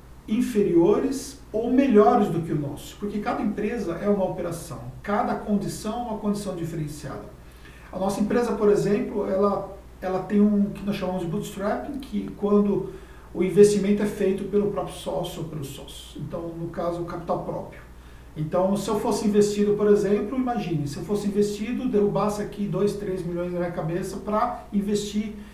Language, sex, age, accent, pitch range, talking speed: Portuguese, male, 50-69, Brazilian, 165-205 Hz, 170 wpm